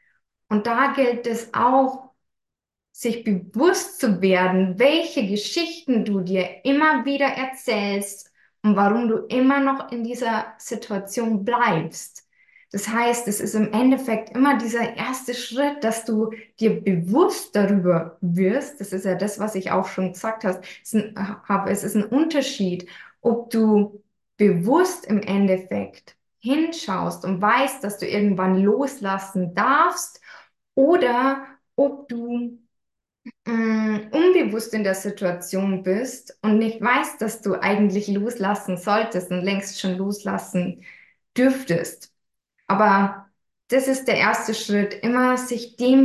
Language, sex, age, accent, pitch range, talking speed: German, female, 20-39, German, 195-250 Hz, 130 wpm